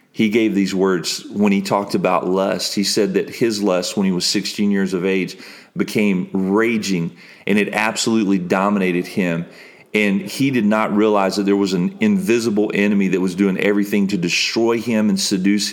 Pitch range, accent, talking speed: 100-125 Hz, American, 185 wpm